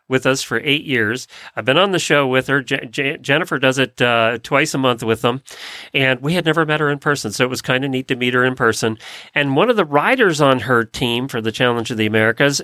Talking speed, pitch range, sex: 255 wpm, 125-160 Hz, male